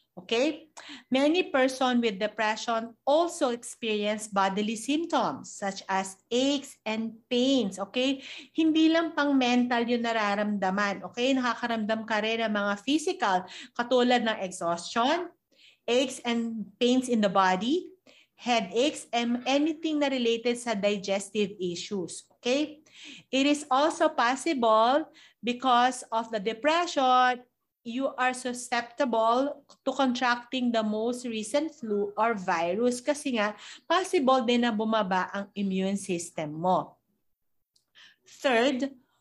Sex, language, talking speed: female, Filipino, 115 wpm